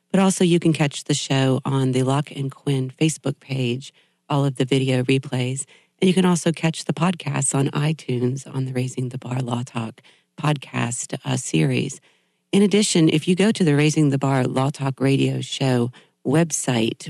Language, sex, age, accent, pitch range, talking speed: English, female, 40-59, American, 130-155 Hz, 185 wpm